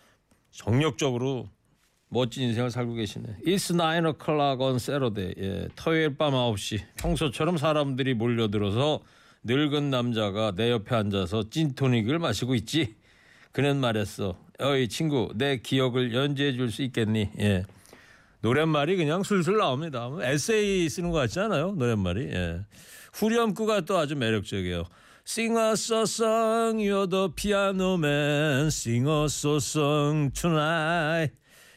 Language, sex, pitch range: Korean, male, 110-155 Hz